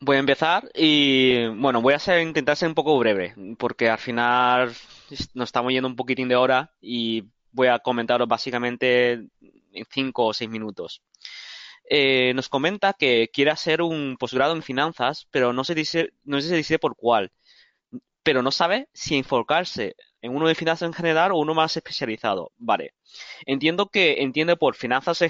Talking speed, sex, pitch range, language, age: 170 wpm, male, 125-155 Hz, Spanish, 20-39